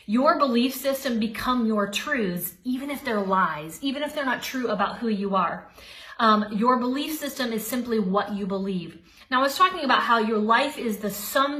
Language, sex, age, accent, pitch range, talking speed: English, female, 30-49, American, 195-235 Hz, 200 wpm